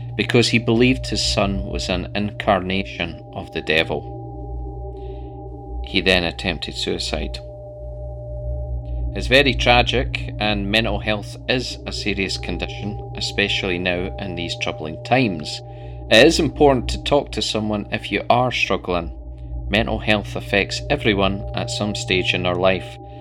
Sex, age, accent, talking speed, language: male, 40-59, British, 135 wpm, English